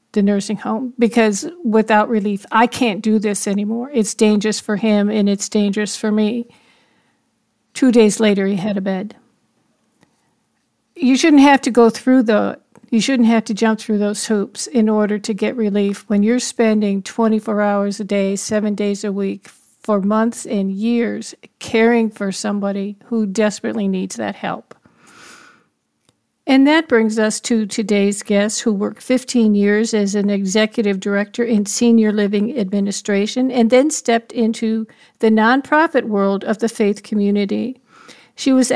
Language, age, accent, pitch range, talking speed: English, 50-69, American, 205-235 Hz, 160 wpm